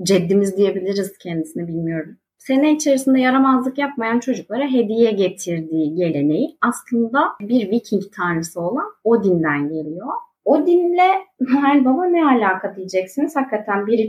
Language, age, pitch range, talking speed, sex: Turkish, 30-49, 175-230 Hz, 115 wpm, female